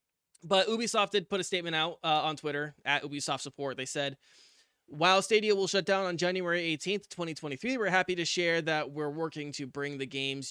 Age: 20-39